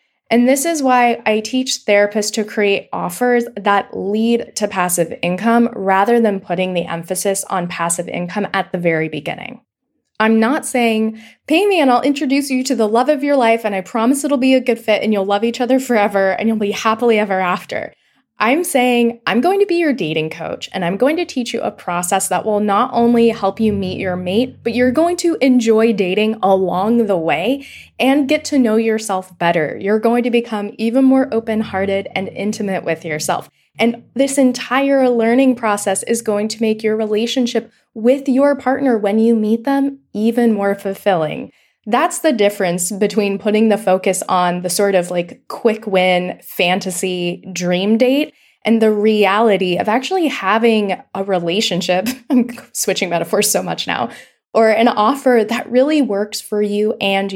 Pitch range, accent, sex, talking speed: 195-245 Hz, American, female, 185 wpm